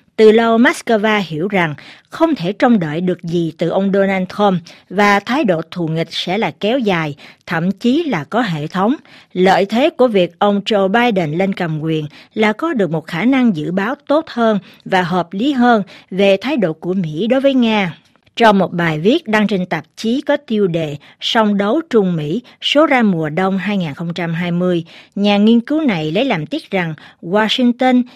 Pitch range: 170-230 Hz